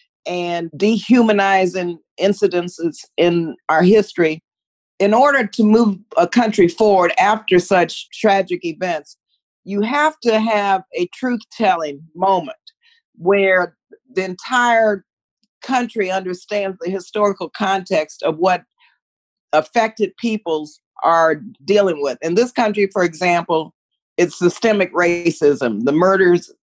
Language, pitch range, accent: English, 165-210 Hz, American